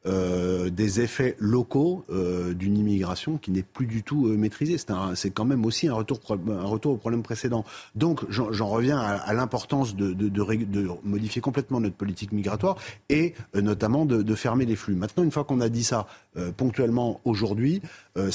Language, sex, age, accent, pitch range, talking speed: French, male, 30-49, French, 105-130 Hz, 205 wpm